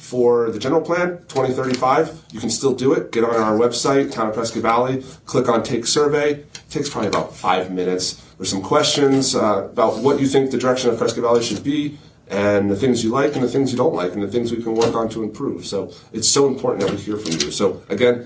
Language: English